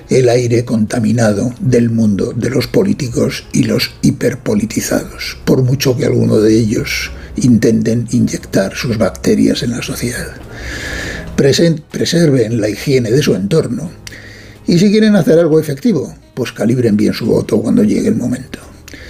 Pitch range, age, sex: 110-150 Hz, 60-79, male